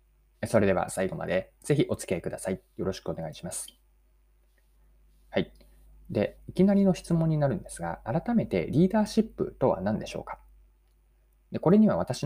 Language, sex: Japanese, male